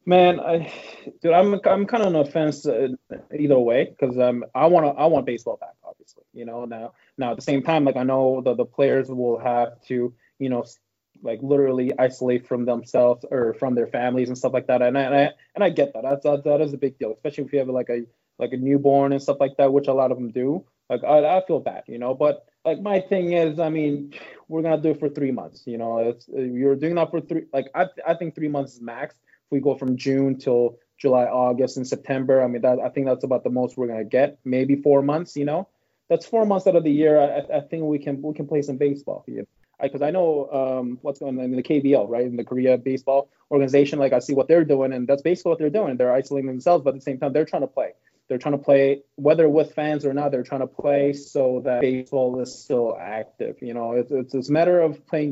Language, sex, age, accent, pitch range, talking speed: English, male, 20-39, American, 125-150 Hz, 260 wpm